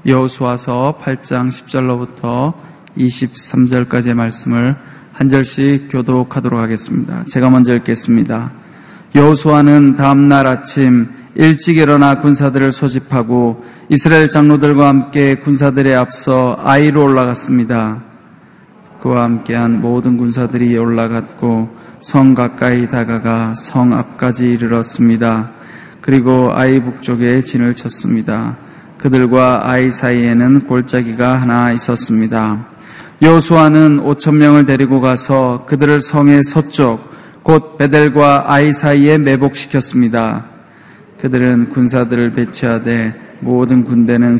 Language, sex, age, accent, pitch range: Korean, male, 20-39, native, 120-145 Hz